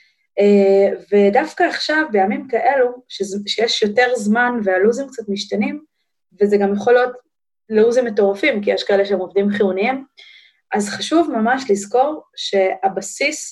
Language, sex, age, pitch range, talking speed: Hebrew, female, 20-39, 205-275 Hz, 130 wpm